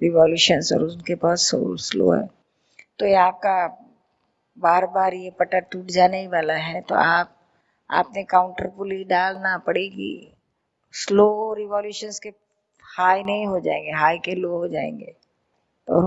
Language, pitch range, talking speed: Hindi, 170-195 Hz, 140 wpm